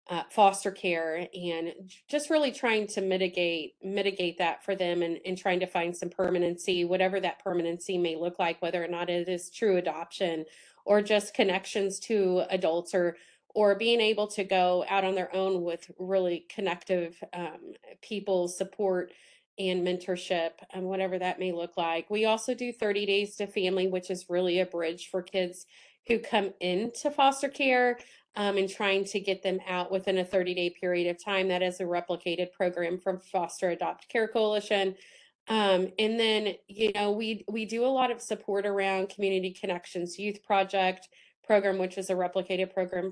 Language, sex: English, female